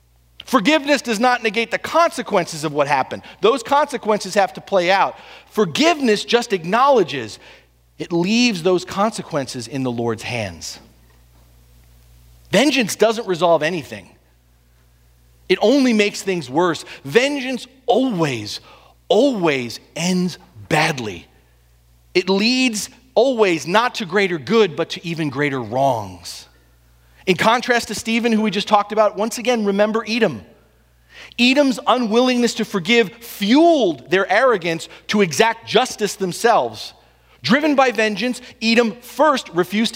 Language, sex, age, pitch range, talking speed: English, male, 40-59, 145-235 Hz, 125 wpm